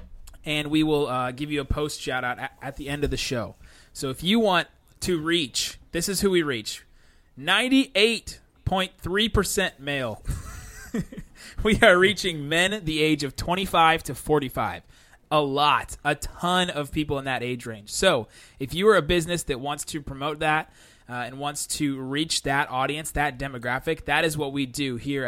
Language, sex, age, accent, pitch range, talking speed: English, male, 20-39, American, 125-160 Hz, 175 wpm